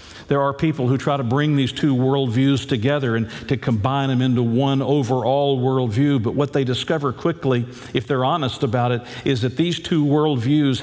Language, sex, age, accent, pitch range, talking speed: English, male, 50-69, American, 125-150 Hz, 190 wpm